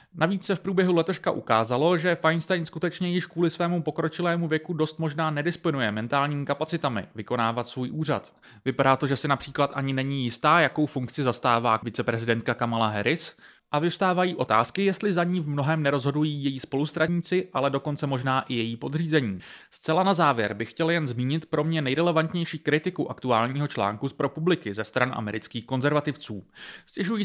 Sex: male